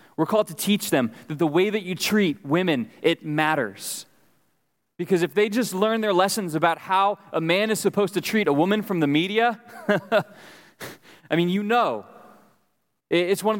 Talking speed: 180 wpm